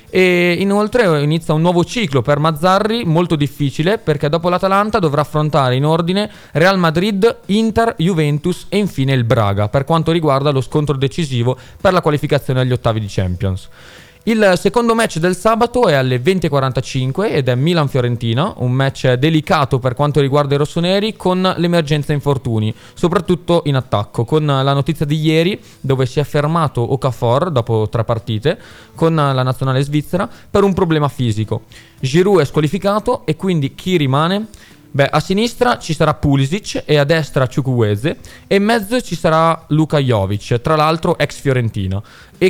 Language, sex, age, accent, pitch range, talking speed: Italian, male, 20-39, native, 135-180 Hz, 160 wpm